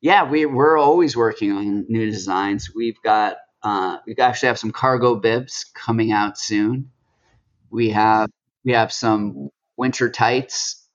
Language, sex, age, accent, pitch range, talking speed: English, male, 30-49, American, 110-135 Hz, 150 wpm